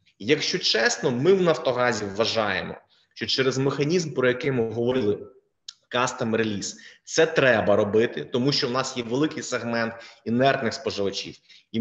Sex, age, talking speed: male, 20-39, 150 wpm